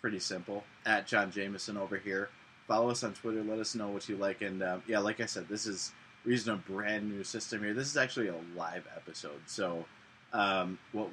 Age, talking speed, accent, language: 20-39, 215 wpm, American, English